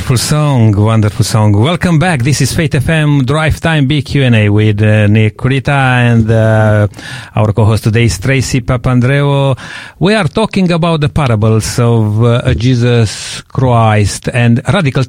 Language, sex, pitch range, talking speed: English, male, 110-140 Hz, 145 wpm